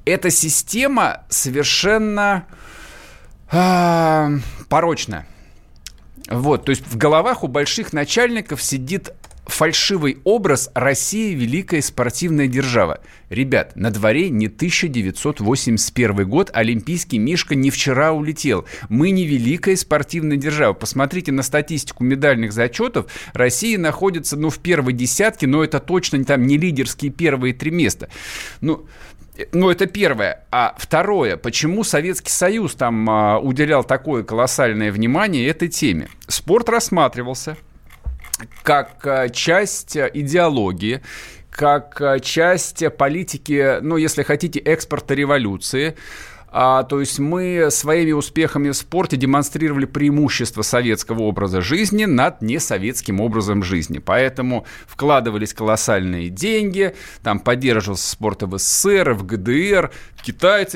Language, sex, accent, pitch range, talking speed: Russian, male, native, 115-160 Hz, 115 wpm